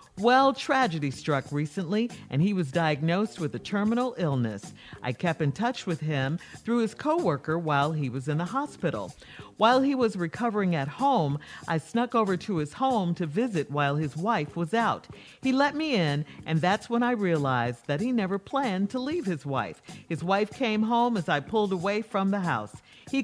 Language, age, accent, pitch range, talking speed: English, 50-69, American, 150-230 Hz, 195 wpm